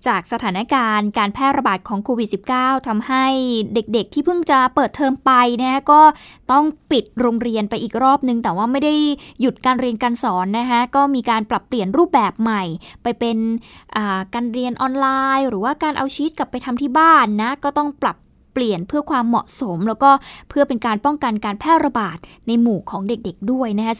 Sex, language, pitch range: female, Thai, 225-280 Hz